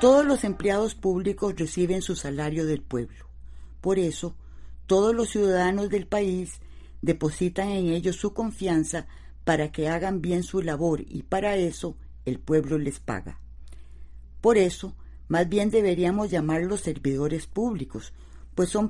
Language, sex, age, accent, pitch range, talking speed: Spanish, female, 50-69, American, 140-190 Hz, 140 wpm